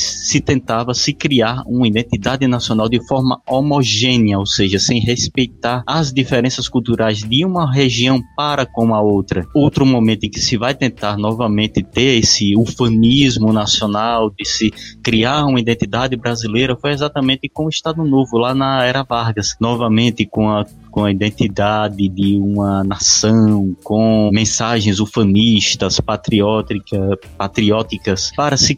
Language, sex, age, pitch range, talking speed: Portuguese, male, 20-39, 105-135 Hz, 140 wpm